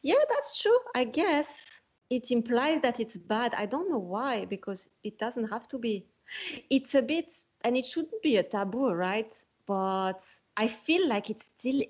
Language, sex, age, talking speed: English, female, 30-49, 180 wpm